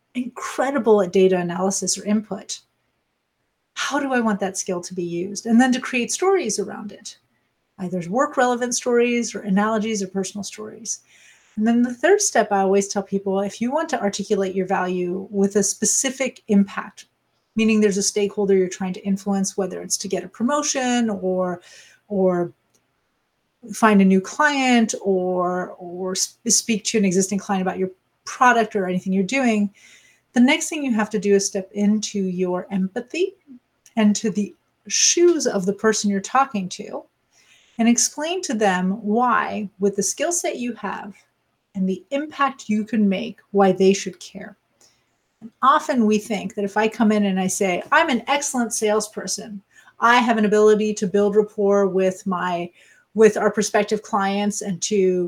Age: 30-49